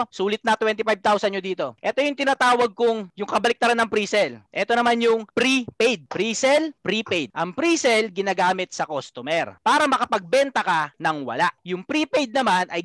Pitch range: 195-255 Hz